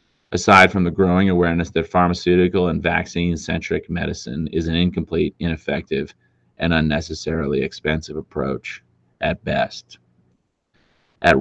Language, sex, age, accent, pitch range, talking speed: English, male, 30-49, American, 80-90 Hz, 110 wpm